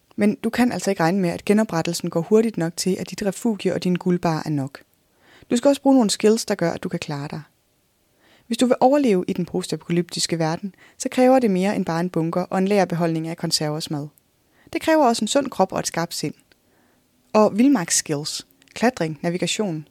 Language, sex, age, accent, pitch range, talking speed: Danish, female, 20-39, native, 170-225 Hz, 210 wpm